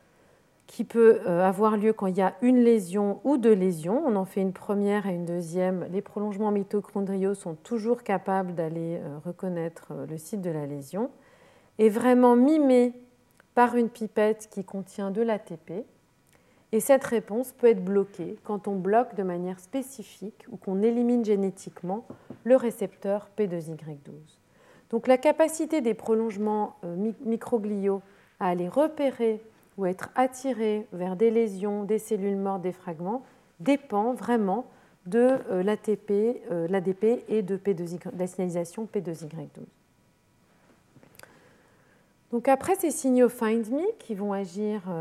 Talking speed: 140 wpm